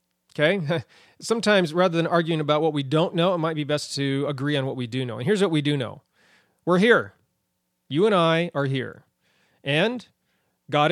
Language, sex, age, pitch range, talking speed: English, male, 30-49, 135-175 Hz, 200 wpm